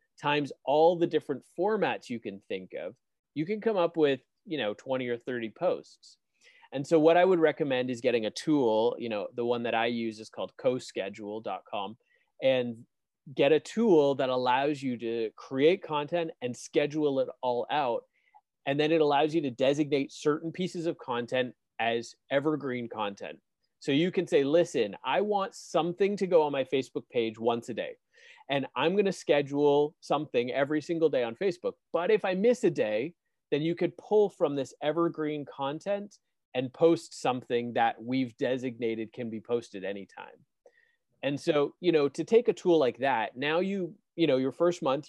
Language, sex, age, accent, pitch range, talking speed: English, male, 30-49, American, 125-170 Hz, 185 wpm